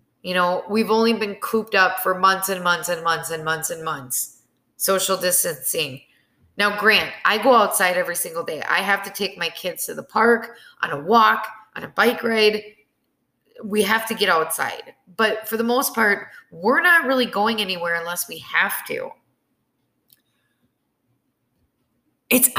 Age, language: 20-39, English